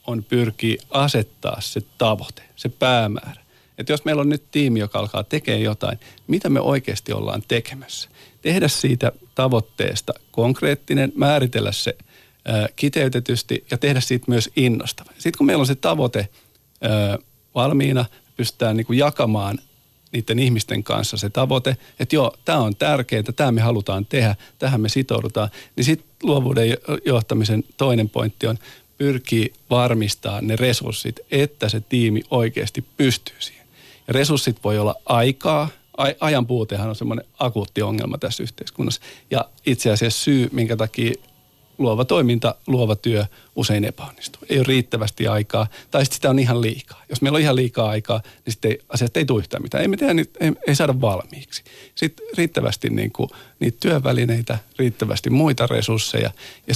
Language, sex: Finnish, male